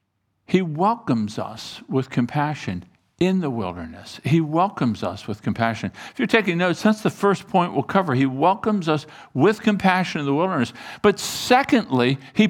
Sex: male